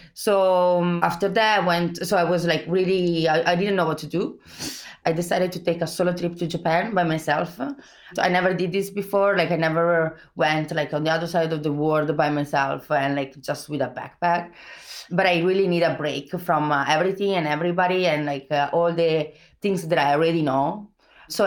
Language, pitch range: English, 150-180 Hz